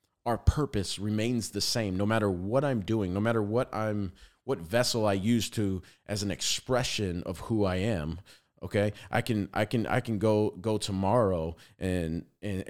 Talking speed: 180 wpm